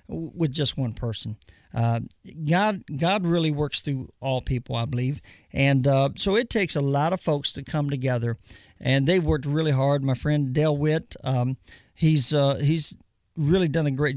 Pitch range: 130-170 Hz